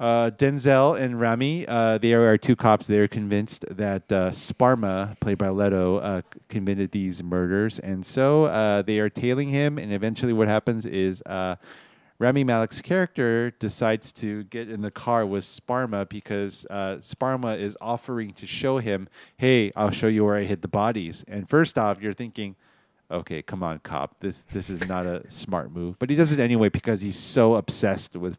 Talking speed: 190 wpm